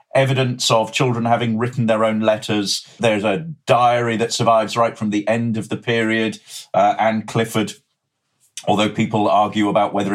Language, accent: English, British